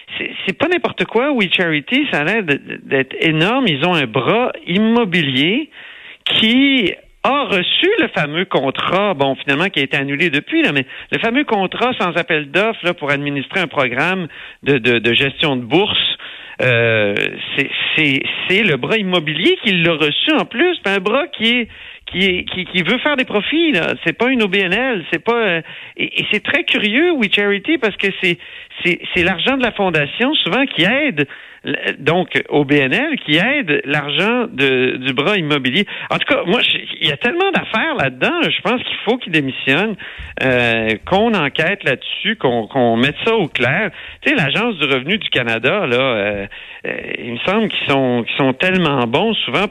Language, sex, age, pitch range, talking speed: French, male, 50-69, 140-230 Hz, 190 wpm